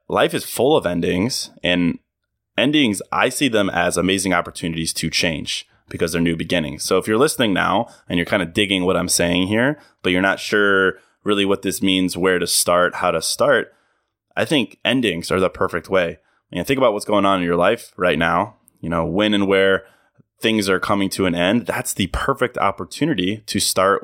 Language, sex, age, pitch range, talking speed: English, male, 20-39, 85-100 Hz, 205 wpm